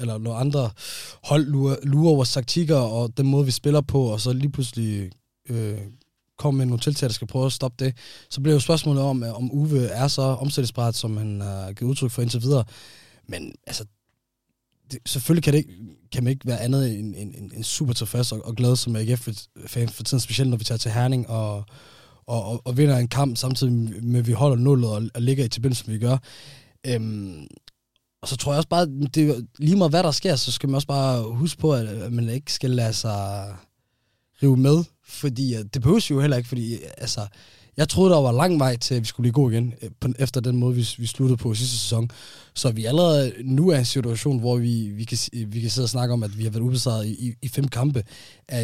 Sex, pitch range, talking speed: male, 115-135 Hz, 220 wpm